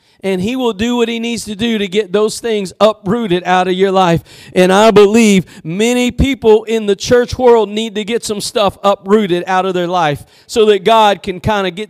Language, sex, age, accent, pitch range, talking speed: English, male, 40-59, American, 220-275 Hz, 220 wpm